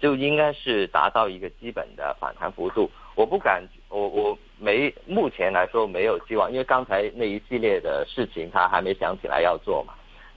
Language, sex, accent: Chinese, male, native